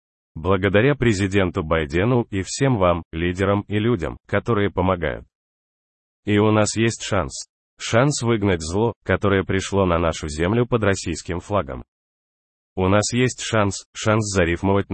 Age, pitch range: 30-49, 85-115 Hz